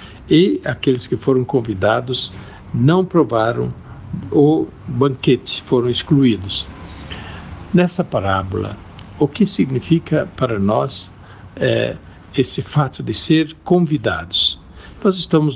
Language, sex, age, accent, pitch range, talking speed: Portuguese, male, 60-79, Brazilian, 105-150 Hz, 95 wpm